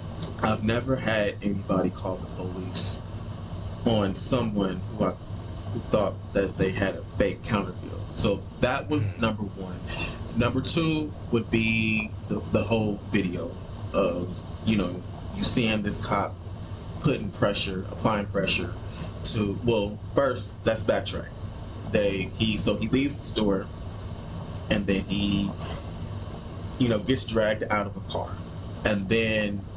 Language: English